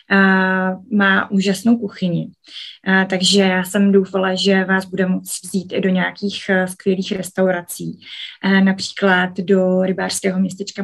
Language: Czech